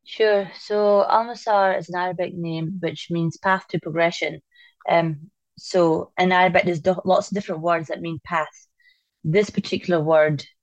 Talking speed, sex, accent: 160 wpm, female, British